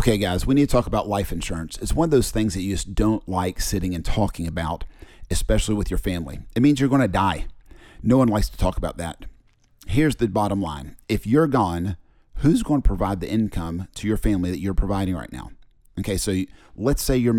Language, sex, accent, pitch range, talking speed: English, male, American, 90-110 Hz, 230 wpm